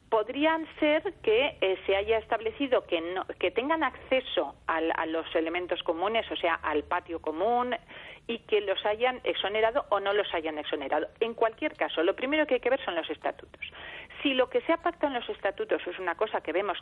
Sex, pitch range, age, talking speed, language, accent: female, 170-255 Hz, 40-59, 205 wpm, Spanish, Spanish